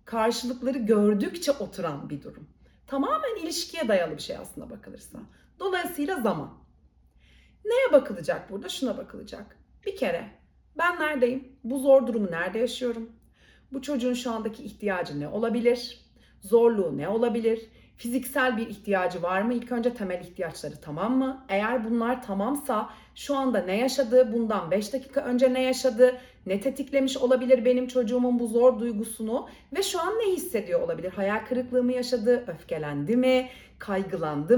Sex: female